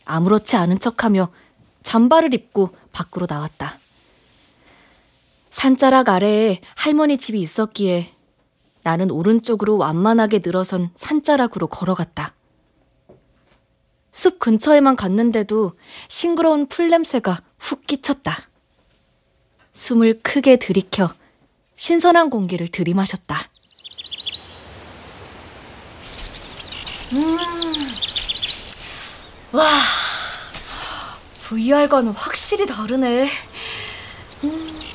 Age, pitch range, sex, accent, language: 20-39, 190-290 Hz, female, native, Korean